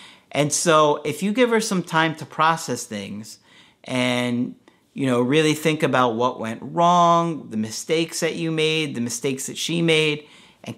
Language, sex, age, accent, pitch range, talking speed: English, male, 40-59, American, 130-170 Hz, 175 wpm